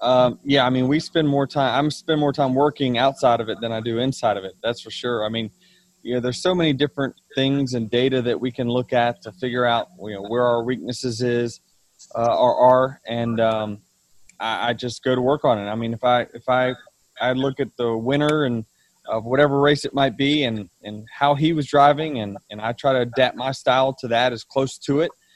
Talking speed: 240 wpm